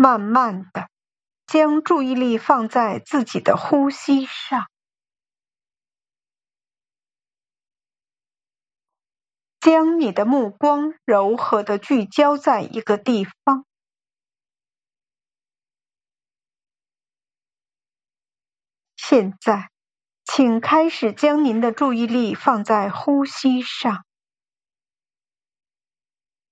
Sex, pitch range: female, 220-280 Hz